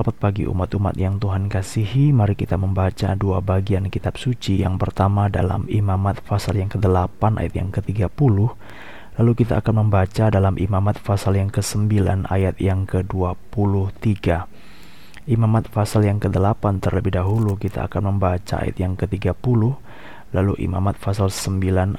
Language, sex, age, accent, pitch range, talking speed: Indonesian, male, 20-39, native, 95-105 Hz, 140 wpm